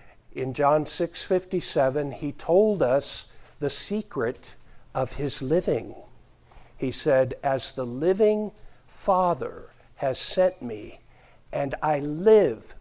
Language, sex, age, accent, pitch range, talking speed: English, male, 60-79, American, 150-215 Hz, 115 wpm